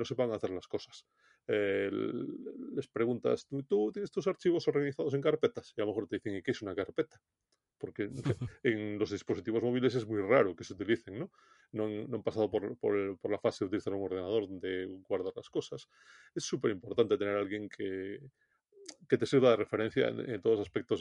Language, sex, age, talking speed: Spanish, male, 30-49, 200 wpm